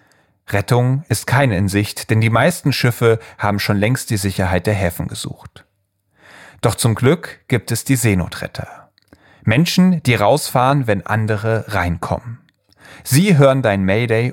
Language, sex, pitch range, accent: German, male, 105-140 Hz, German